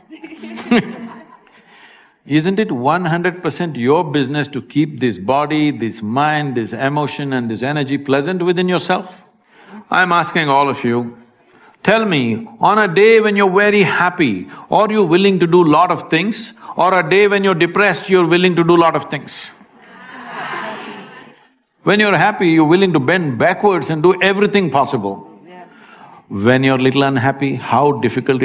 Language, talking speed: English, 155 wpm